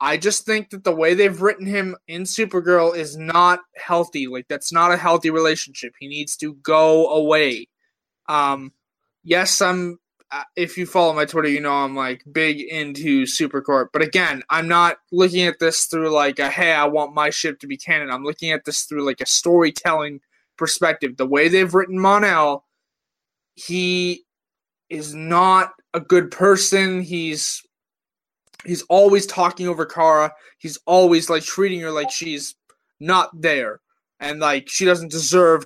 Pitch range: 150-180 Hz